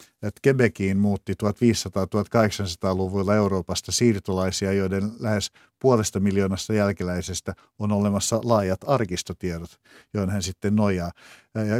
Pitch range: 95-110 Hz